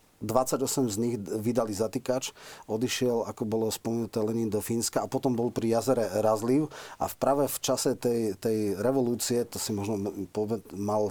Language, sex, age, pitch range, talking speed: Slovak, male, 40-59, 105-125 Hz, 160 wpm